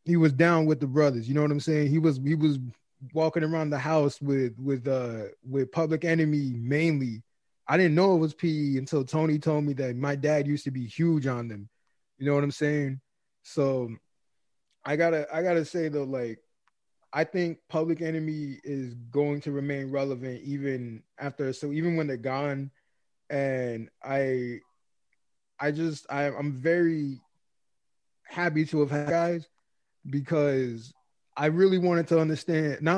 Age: 20-39